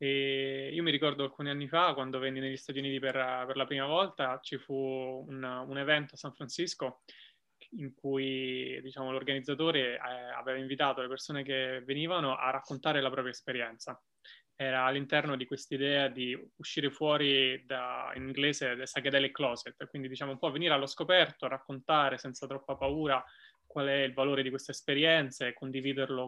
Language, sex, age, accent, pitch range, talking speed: Italian, male, 20-39, native, 130-145 Hz, 170 wpm